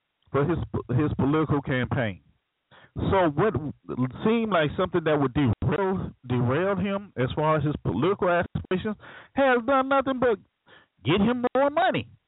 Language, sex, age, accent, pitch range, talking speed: English, male, 40-59, American, 130-190 Hz, 140 wpm